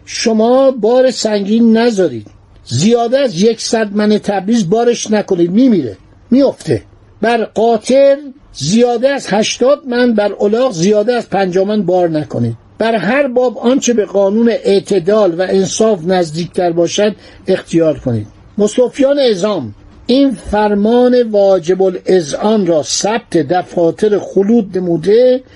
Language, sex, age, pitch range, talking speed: Persian, male, 60-79, 175-225 Hz, 115 wpm